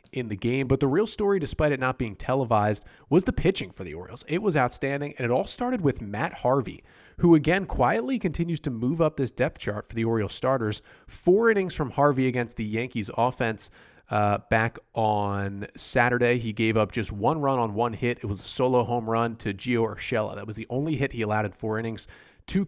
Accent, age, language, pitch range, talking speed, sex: American, 30-49, English, 105-130 Hz, 220 wpm, male